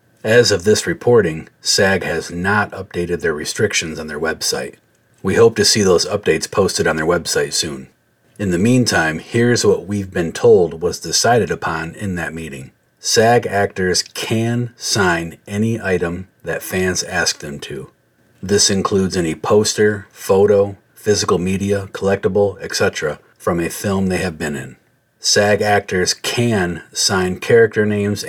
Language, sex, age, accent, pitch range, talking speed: English, male, 40-59, American, 90-110 Hz, 150 wpm